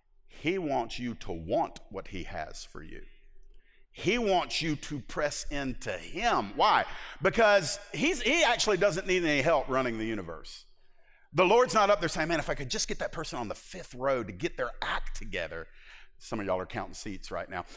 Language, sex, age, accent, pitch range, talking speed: English, male, 50-69, American, 135-230 Hz, 205 wpm